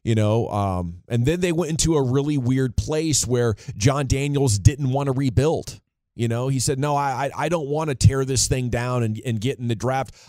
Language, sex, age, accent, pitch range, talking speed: English, male, 30-49, American, 105-130 Hz, 230 wpm